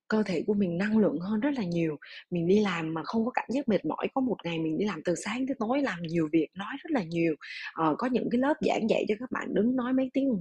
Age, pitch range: 20-39, 170-235 Hz